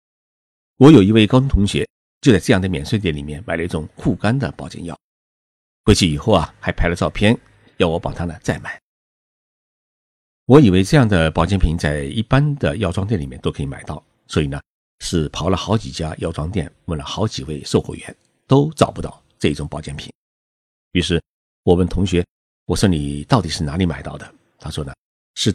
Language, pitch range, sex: Chinese, 75-110 Hz, male